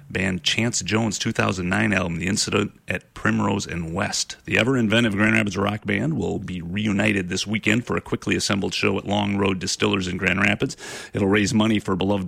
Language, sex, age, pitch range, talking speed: English, male, 30-49, 90-110 Hz, 190 wpm